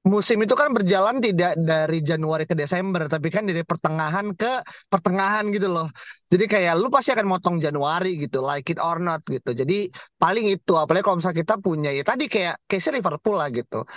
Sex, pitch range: male, 155-190 Hz